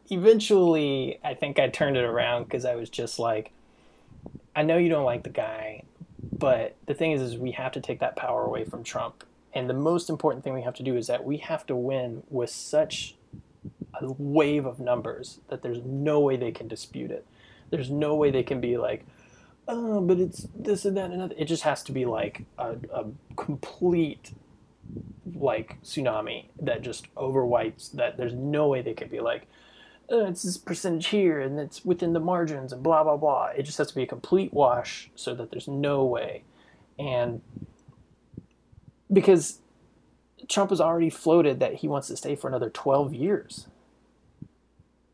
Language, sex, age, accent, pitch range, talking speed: English, male, 20-39, American, 125-165 Hz, 185 wpm